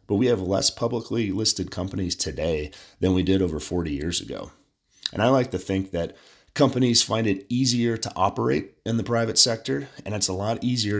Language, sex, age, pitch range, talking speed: English, male, 30-49, 85-110 Hz, 195 wpm